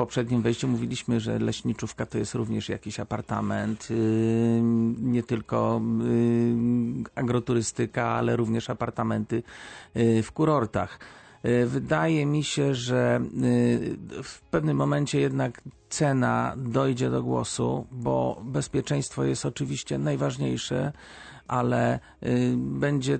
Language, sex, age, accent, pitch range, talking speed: Polish, male, 40-59, native, 110-130 Hz, 95 wpm